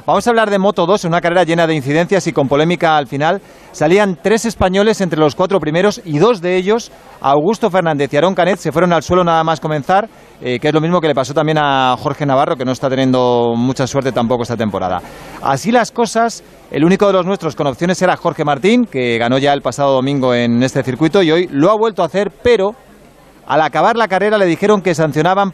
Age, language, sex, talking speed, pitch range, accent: 40-59, Spanish, male, 230 wpm, 145-195 Hz, Spanish